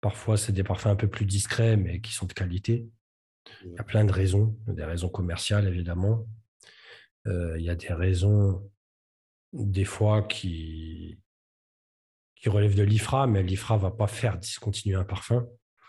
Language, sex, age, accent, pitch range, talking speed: French, male, 40-59, French, 95-110 Hz, 170 wpm